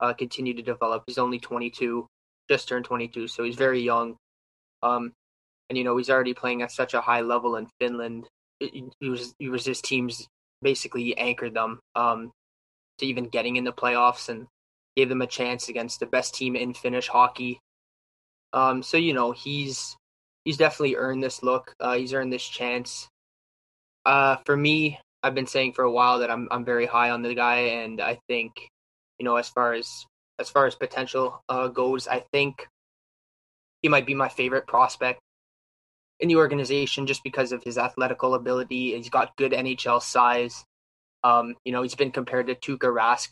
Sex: male